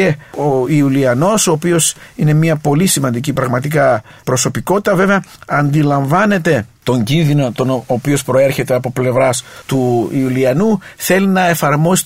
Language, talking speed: English, 120 wpm